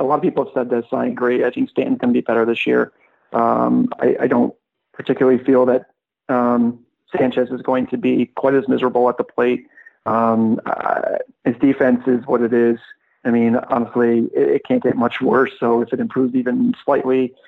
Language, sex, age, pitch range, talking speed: English, male, 40-59, 120-135 Hz, 205 wpm